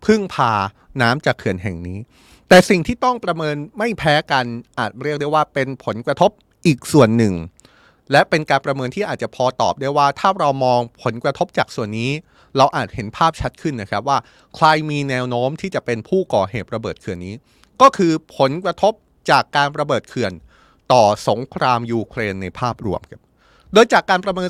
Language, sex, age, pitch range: Thai, male, 30-49, 120-165 Hz